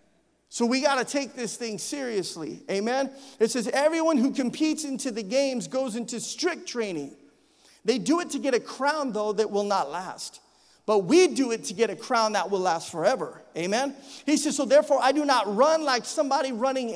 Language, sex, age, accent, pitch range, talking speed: English, male, 40-59, American, 235-310 Hz, 200 wpm